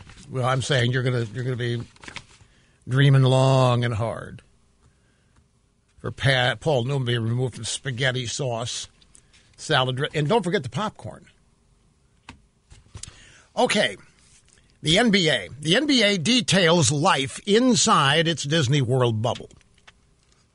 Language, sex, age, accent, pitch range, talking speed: English, male, 60-79, American, 130-215 Hz, 115 wpm